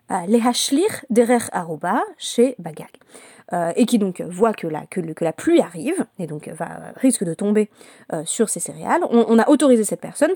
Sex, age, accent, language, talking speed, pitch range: female, 20-39, French, French, 195 wpm, 185-245 Hz